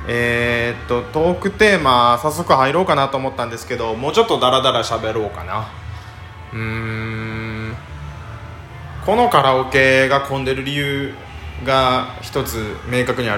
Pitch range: 100-140 Hz